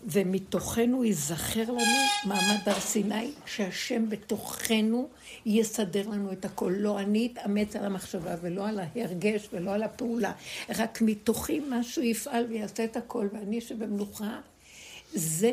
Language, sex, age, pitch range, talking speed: Hebrew, female, 60-79, 200-245 Hz, 130 wpm